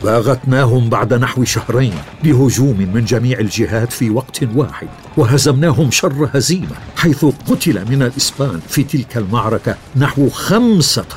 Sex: male